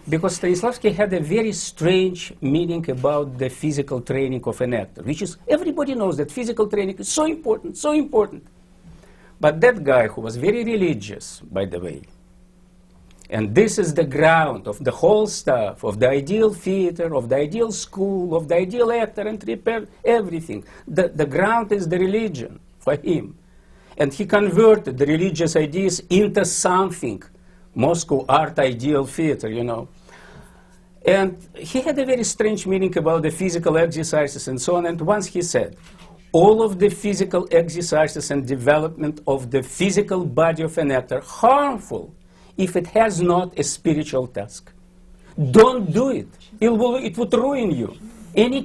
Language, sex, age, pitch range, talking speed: English, male, 50-69, 150-210 Hz, 165 wpm